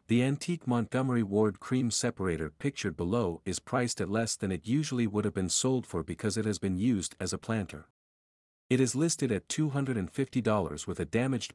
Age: 50-69